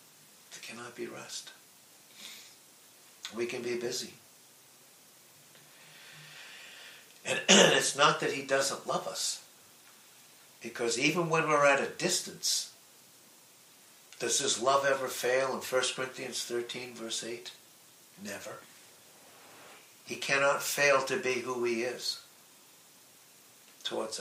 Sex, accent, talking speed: male, American, 110 wpm